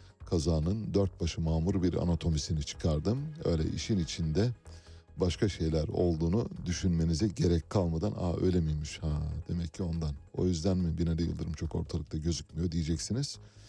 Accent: native